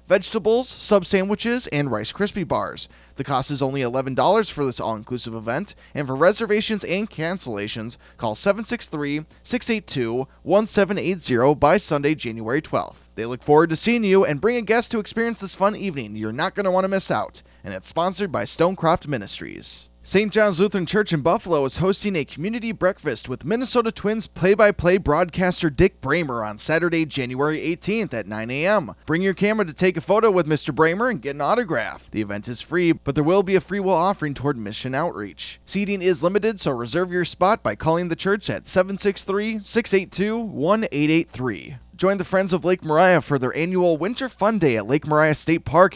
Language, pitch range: English, 145-195 Hz